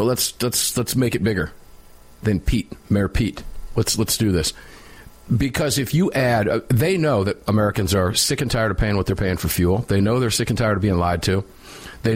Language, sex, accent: English, male, American